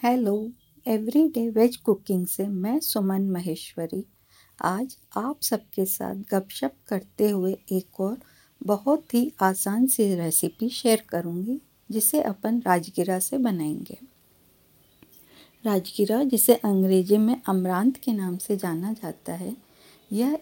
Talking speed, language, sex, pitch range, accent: 120 wpm, Hindi, female, 190-240 Hz, native